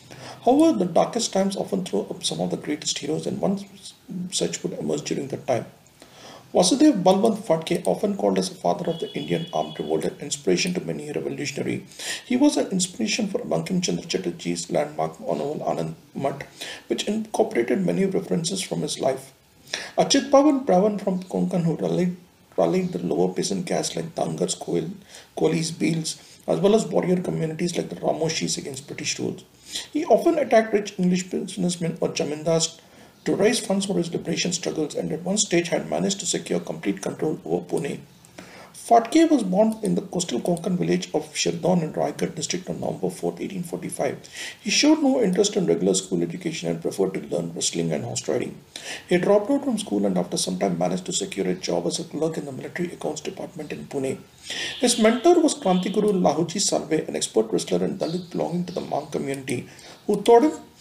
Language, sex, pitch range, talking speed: English, male, 160-215 Hz, 185 wpm